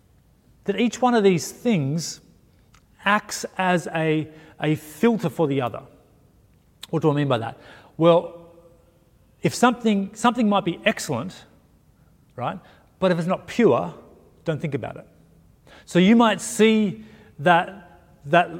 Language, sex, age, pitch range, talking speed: English, male, 30-49, 155-205 Hz, 140 wpm